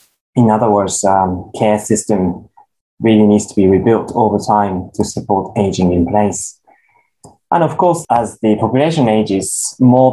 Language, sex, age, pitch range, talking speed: English, male, 20-39, 100-115 Hz, 155 wpm